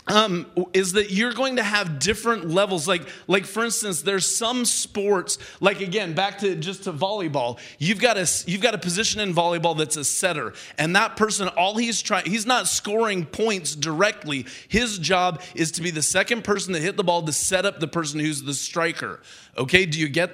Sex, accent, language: male, American, English